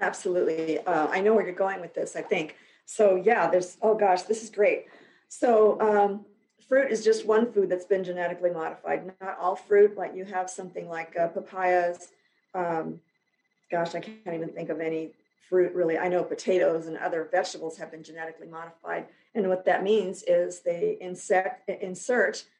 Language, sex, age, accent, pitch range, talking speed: English, female, 50-69, American, 175-220 Hz, 180 wpm